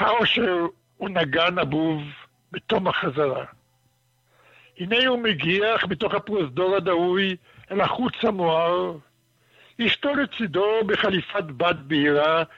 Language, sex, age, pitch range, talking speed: Hebrew, male, 60-79, 155-195 Hz, 95 wpm